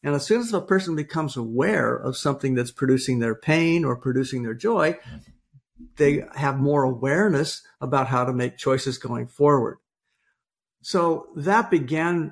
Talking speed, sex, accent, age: 155 wpm, male, American, 50-69